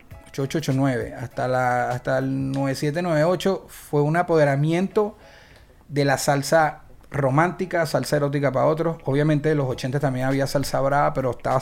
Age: 30-49